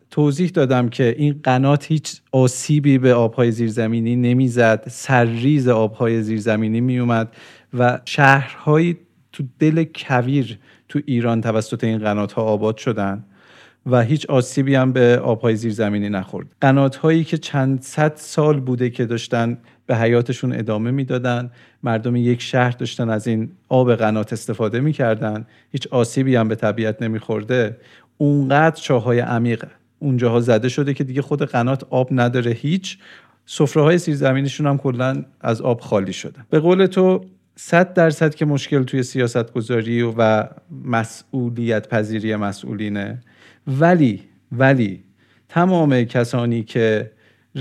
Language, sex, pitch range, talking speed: Persian, male, 115-140 Hz, 130 wpm